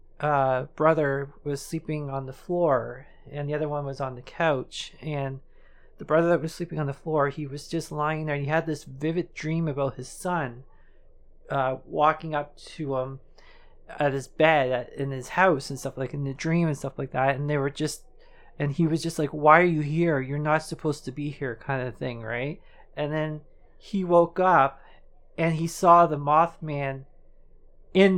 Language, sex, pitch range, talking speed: English, male, 140-160 Hz, 200 wpm